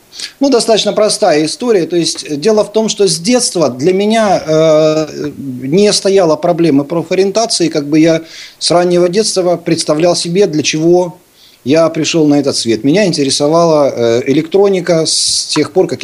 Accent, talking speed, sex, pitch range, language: native, 155 wpm, male, 145-195 Hz, Russian